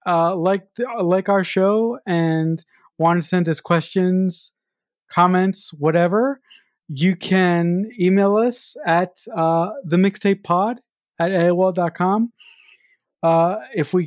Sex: male